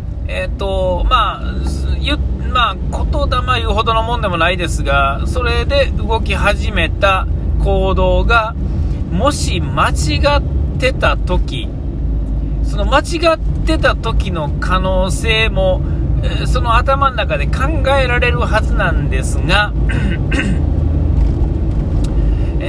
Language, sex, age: Japanese, male, 40-59